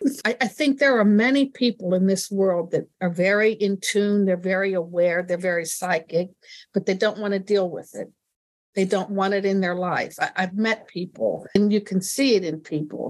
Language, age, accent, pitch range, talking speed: English, 60-79, American, 195-235 Hz, 205 wpm